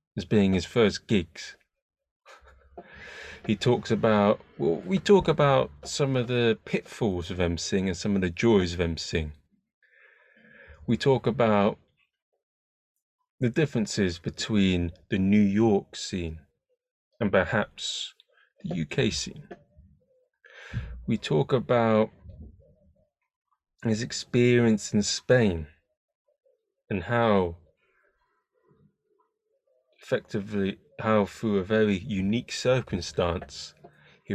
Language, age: English, 30-49